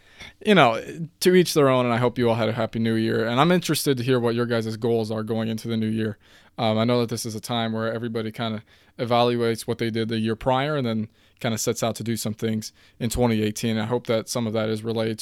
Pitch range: 110-130 Hz